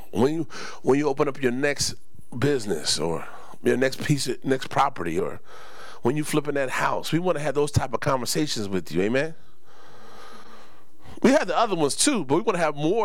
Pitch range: 135-220 Hz